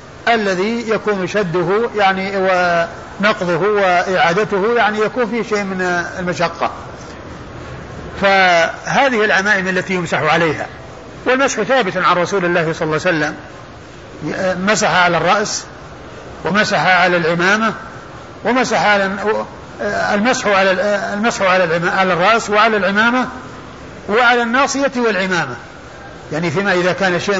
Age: 50-69